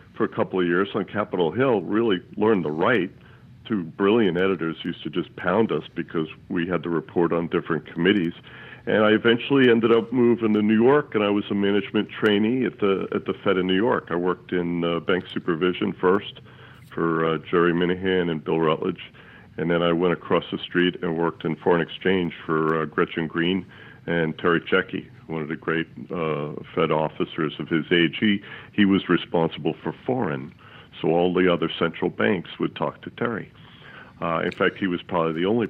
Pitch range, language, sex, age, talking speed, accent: 85-100 Hz, English, male, 60-79, 200 wpm, American